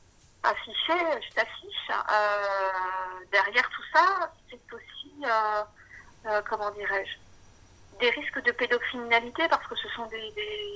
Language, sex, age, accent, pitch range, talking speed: French, female, 40-59, French, 205-280 Hz, 130 wpm